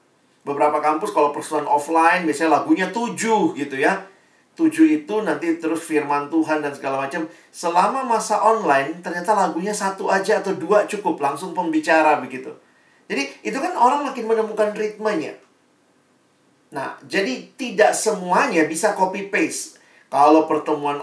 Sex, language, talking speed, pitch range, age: male, Indonesian, 135 wpm, 150-210 Hz, 40-59